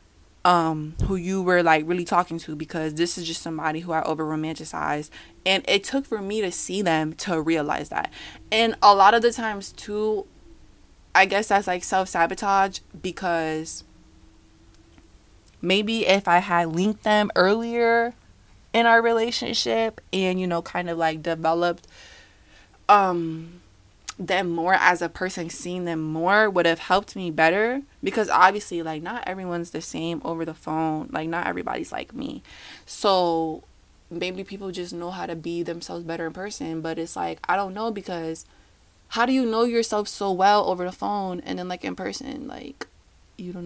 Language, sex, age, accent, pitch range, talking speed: English, female, 20-39, American, 165-205 Hz, 170 wpm